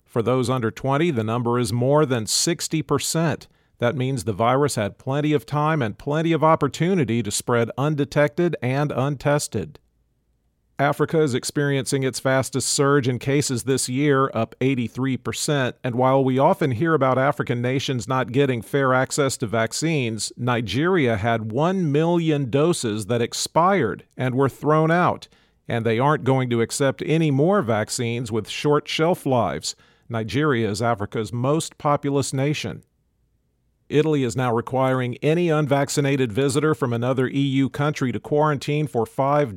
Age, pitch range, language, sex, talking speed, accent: 40-59, 120-145 Hz, English, male, 150 wpm, American